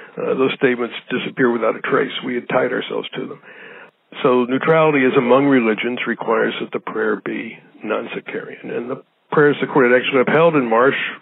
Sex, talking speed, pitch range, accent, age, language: male, 180 wpm, 120-145 Hz, American, 60-79, English